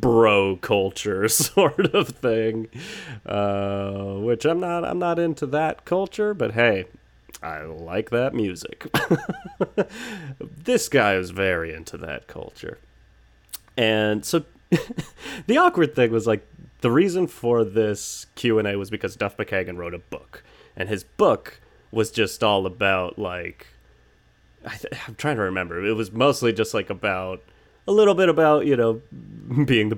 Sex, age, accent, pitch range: male, 30-49, American, 100-160 Hz